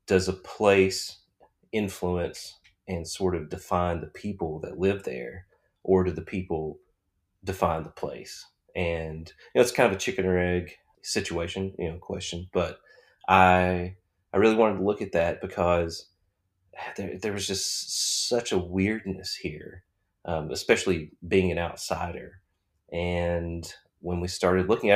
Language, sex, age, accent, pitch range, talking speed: English, male, 30-49, American, 90-100 Hz, 150 wpm